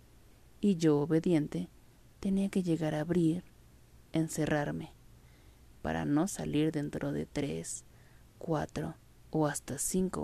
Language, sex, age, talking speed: Spanish, female, 30-49, 110 wpm